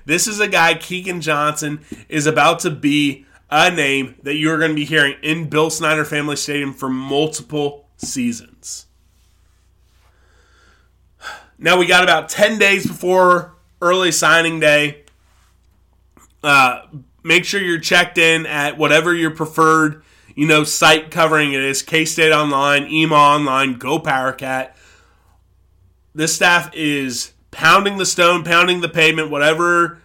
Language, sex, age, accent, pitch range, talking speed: English, male, 20-39, American, 135-165 Hz, 140 wpm